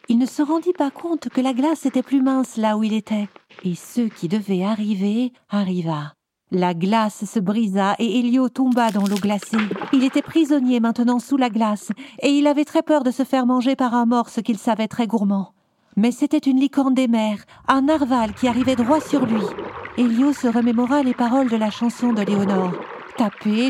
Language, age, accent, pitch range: French, 50-69, French, 210-270 Hz